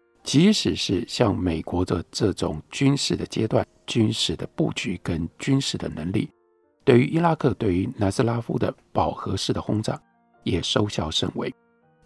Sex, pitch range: male, 95-155 Hz